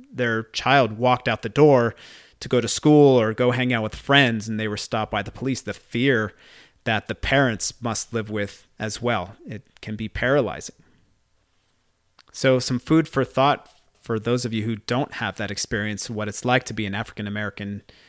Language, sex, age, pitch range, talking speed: English, male, 30-49, 110-135 Hz, 190 wpm